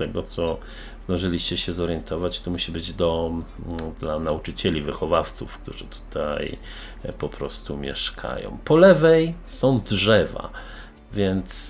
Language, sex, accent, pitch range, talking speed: Polish, male, native, 85-105 Hz, 120 wpm